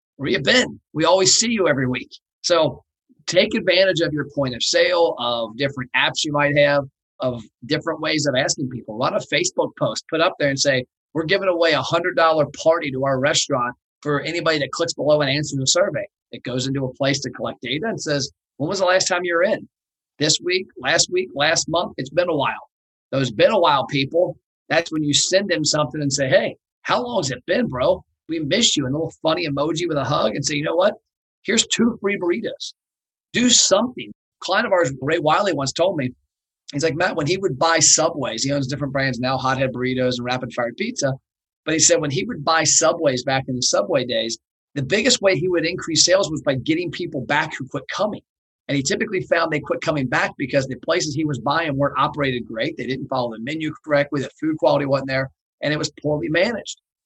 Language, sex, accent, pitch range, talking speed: English, male, American, 135-170 Hz, 225 wpm